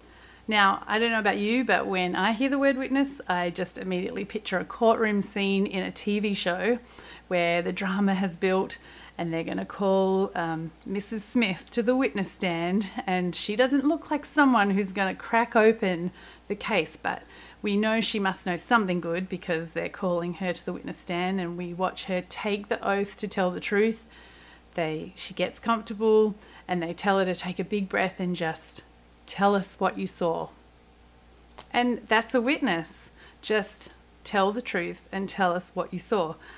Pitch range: 180-220 Hz